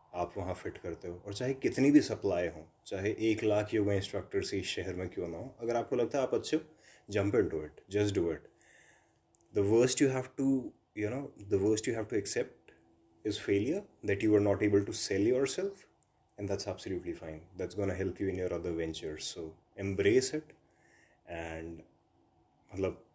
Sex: male